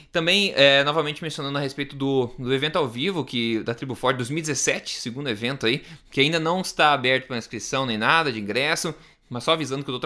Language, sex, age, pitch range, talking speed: Portuguese, male, 20-39, 120-150 Hz, 195 wpm